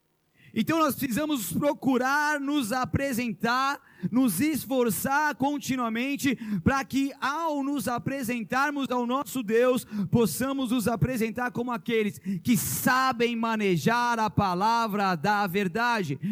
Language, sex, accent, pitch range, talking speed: Portuguese, male, Brazilian, 185-255 Hz, 105 wpm